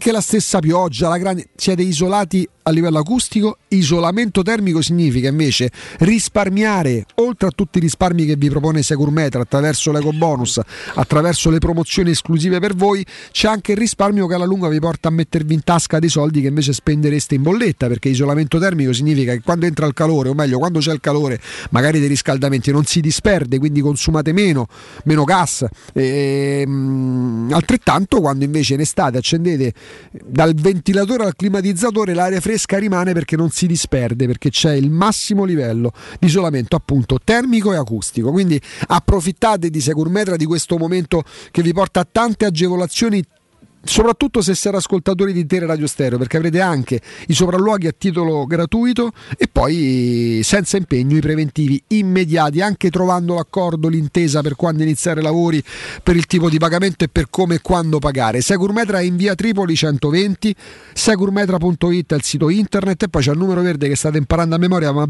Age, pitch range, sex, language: 40-59, 150-190 Hz, male, Italian